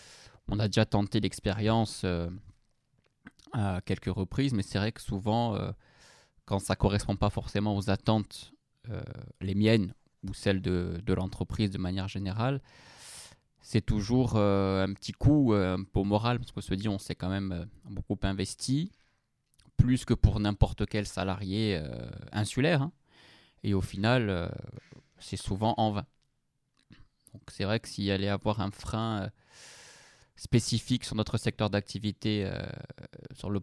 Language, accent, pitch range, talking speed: French, French, 95-115 Hz, 160 wpm